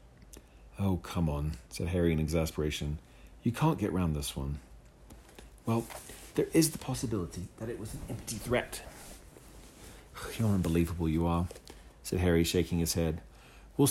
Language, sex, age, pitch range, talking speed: English, male, 40-59, 80-105 Hz, 145 wpm